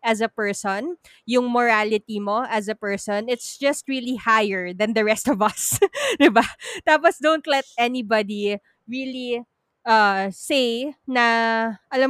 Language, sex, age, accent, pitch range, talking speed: Filipino, female, 20-39, native, 210-265 Hz, 140 wpm